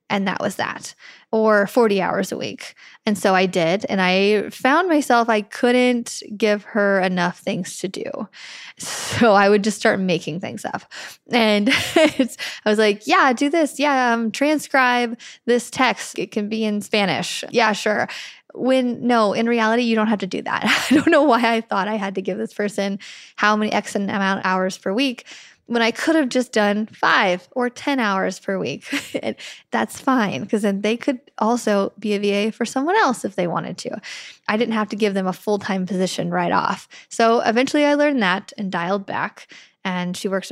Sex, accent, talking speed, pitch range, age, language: female, American, 200 wpm, 195-240 Hz, 10-29, English